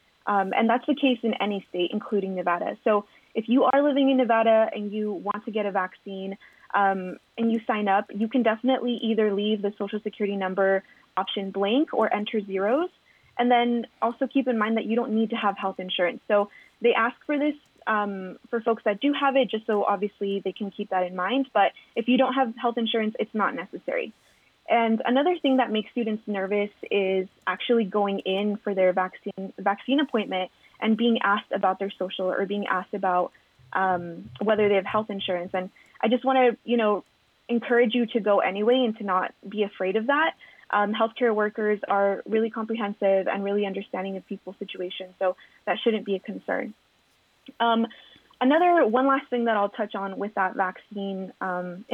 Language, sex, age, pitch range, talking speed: English, female, 20-39, 195-235 Hz, 195 wpm